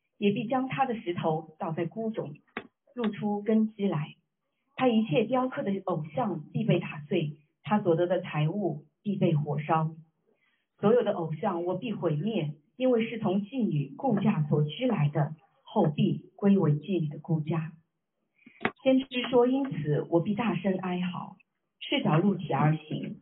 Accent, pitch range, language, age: native, 160-210 Hz, Chinese, 50-69